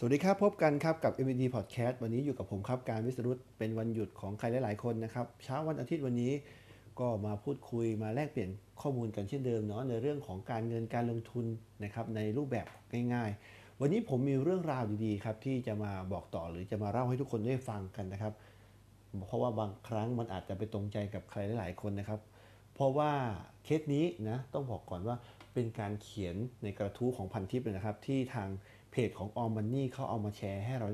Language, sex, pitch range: Thai, male, 105-130 Hz